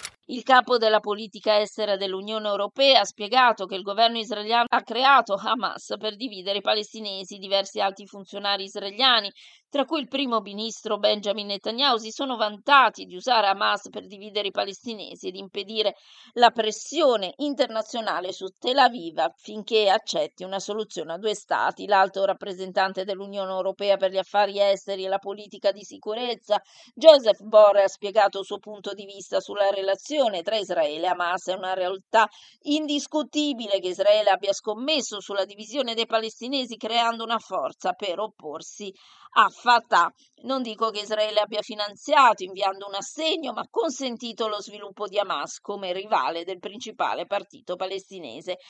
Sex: female